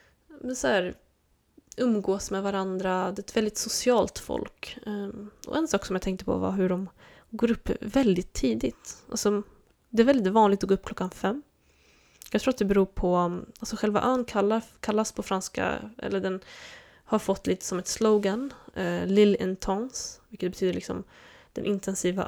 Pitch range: 195-235 Hz